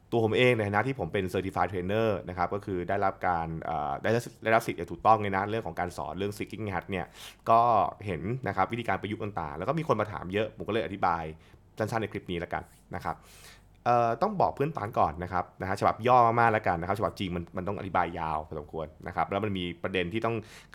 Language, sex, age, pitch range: Thai, male, 20-39, 90-115 Hz